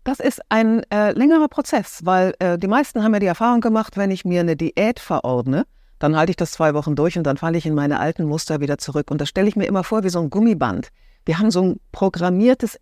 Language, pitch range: German, 150-210 Hz